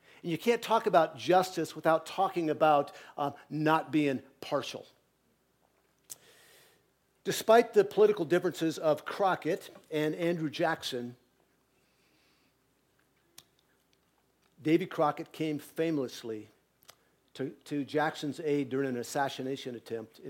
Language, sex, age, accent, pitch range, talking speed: English, male, 50-69, American, 140-175 Hz, 105 wpm